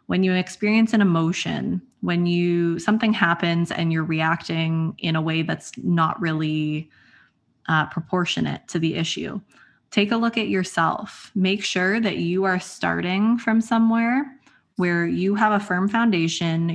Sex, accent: female, American